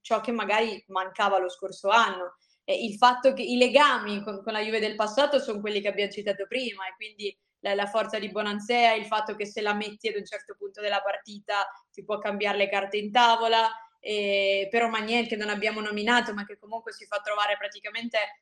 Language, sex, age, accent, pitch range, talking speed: Italian, female, 20-39, native, 205-235 Hz, 210 wpm